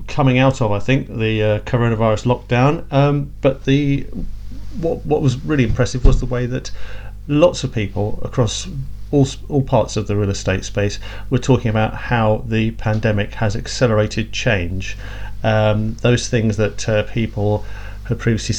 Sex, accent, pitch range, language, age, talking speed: male, British, 105-130 Hz, English, 40-59, 160 wpm